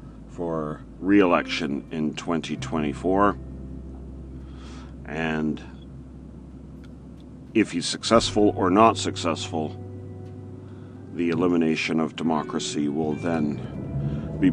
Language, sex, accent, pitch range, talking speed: English, male, American, 75-95 Hz, 75 wpm